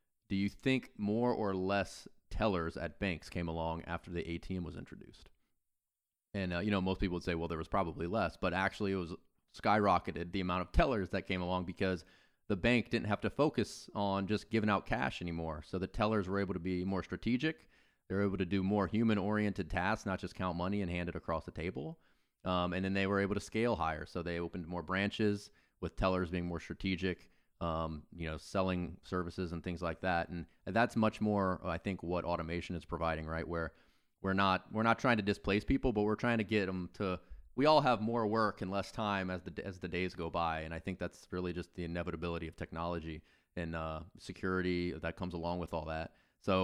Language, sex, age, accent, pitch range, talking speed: English, male, 30-49, American, 85-100 Hz, 220 wpm